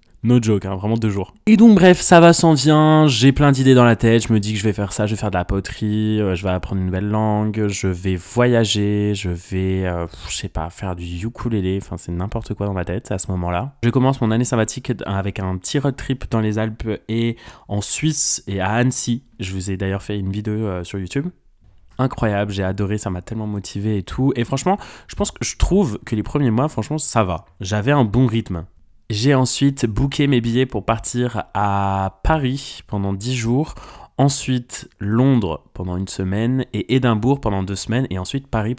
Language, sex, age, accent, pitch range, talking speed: French, male, 20-39, French, 95-125 Hz, 220 wpm